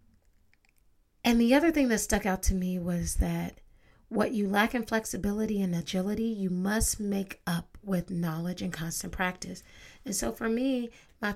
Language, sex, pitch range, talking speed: English, female, 180-220 Hz, 170 wpm